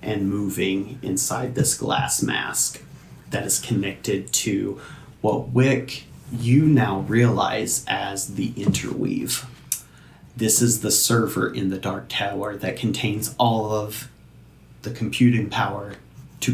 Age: 30-49